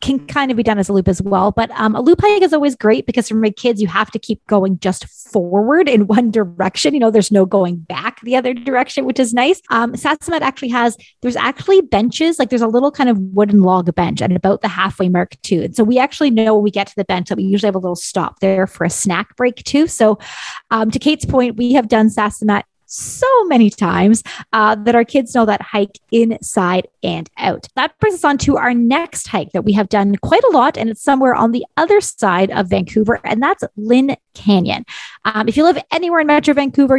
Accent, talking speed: American, 240 wpm